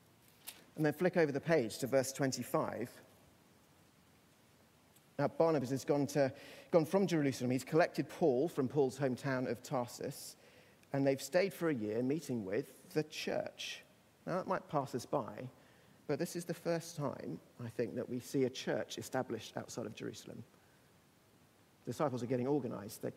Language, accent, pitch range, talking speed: English, British, 125-160 Hz, 165 wpm